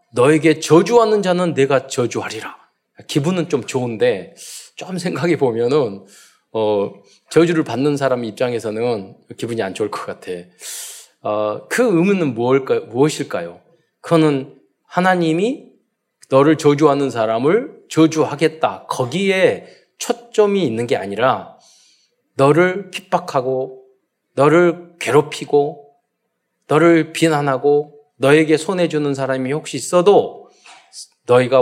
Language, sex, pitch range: Korean, male, 130-185 Hz